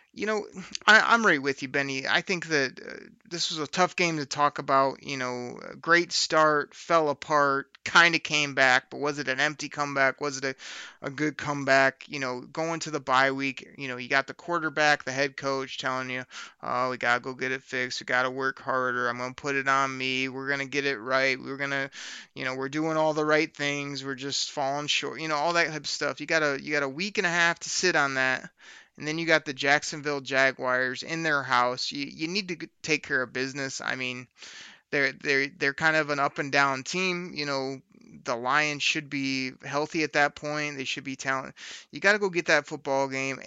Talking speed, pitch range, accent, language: 240 wpm, 135-155 Hz, American, English